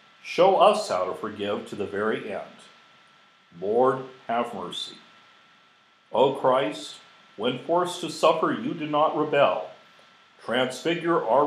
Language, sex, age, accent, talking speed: English, male, 50-69, American, 125 wpm